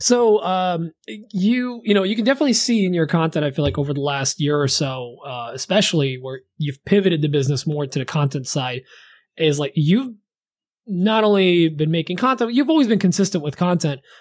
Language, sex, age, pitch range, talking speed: English, male, 20-39, 145-190 Hz, 205 wpm